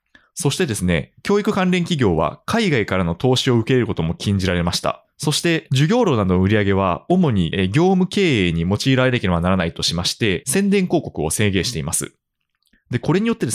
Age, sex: 20-39, male